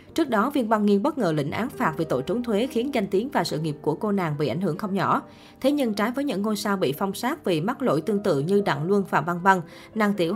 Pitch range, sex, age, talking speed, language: 180-230 Hz, female, 20-39, 295 wpm, Vietnamese